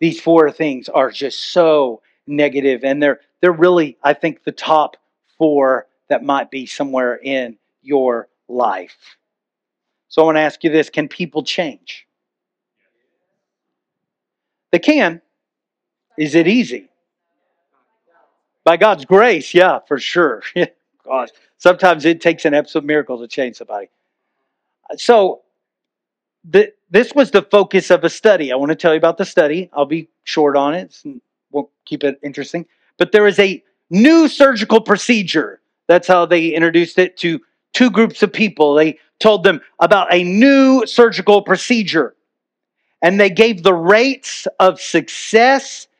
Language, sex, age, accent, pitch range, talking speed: English, male, 50-69, American, 155-220 Hz, 145 wpm